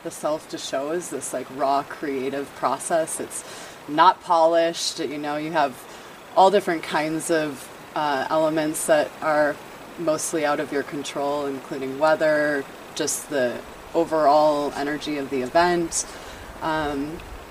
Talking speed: 135 wpm